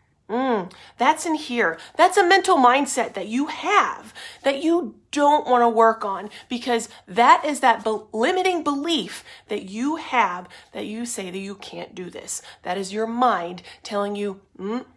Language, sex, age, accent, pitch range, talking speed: English, female, 30-49, American, 205-270 Hz, 170 wpm